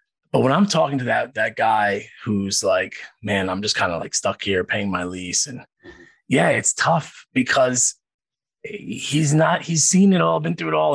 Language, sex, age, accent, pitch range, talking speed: English, male, 20-39, American, 115-165 Hz, 195 wpm